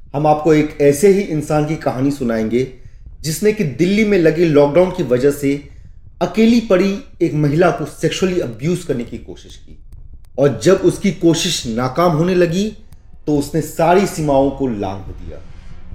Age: 30-49